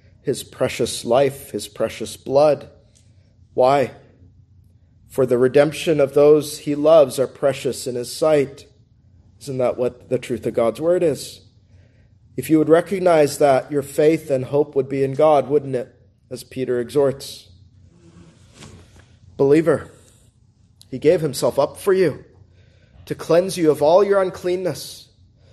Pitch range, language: 110-185 Hz, English